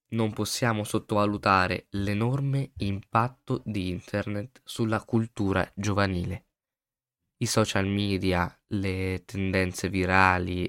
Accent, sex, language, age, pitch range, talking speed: native, male, Italian, 20-39, 90-115 Hz, 90 wpm